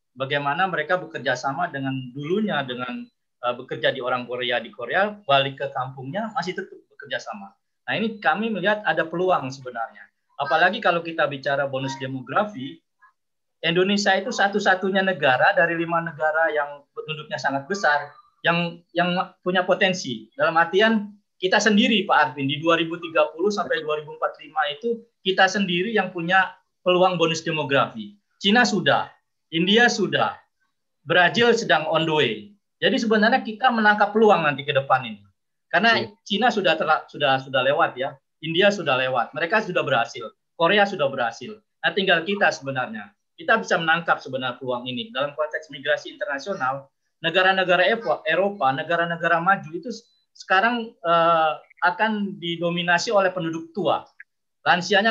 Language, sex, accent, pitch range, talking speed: Indonesian, male, native, 145-200 Hz, 140 wpm